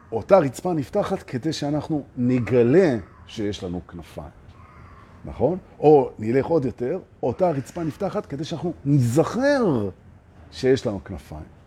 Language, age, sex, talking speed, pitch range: Hebrew, 50-69, male, 120 wpm, 95-165 Hz